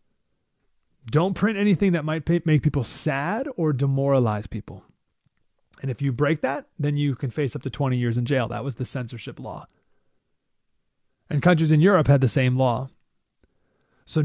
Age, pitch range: 30-49, 140-195 Hz